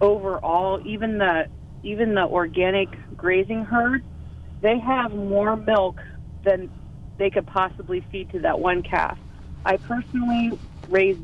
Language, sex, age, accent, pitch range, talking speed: English, female, 40-59, American, 180-205 Hz, 130 wpm